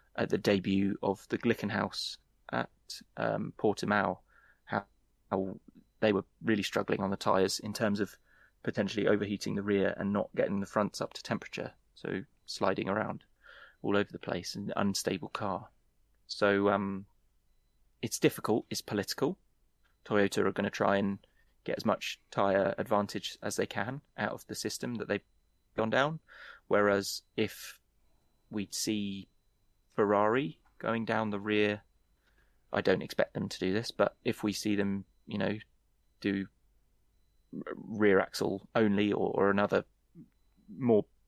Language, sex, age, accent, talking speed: English, male, 20-39, British, 150 wpm